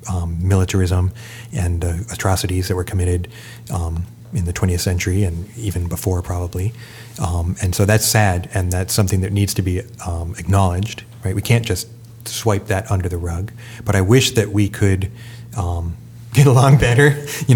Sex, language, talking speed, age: male, English, 175 wpm, 30-49